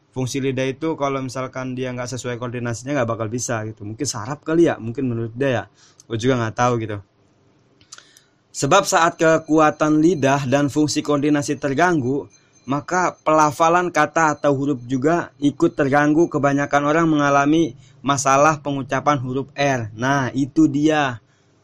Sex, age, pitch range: male, 20-39, 125-150 Hz